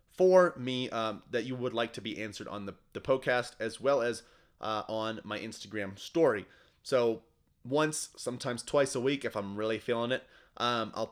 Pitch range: 110-135 Hz